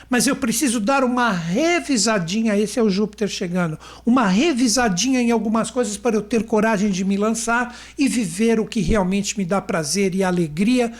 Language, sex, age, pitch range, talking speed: Portuguese, male, 60-79, 195-245 Hz, 180 wpm